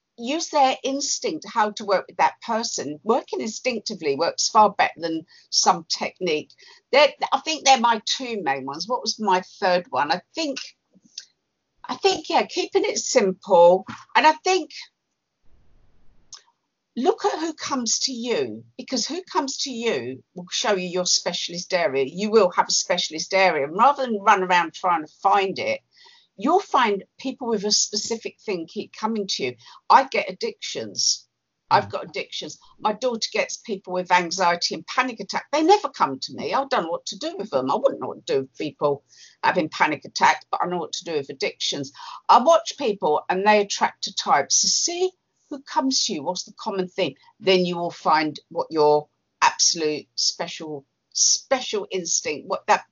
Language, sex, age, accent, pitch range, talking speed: English, female, 50-69, British, 180-300 Hz, 180 wpm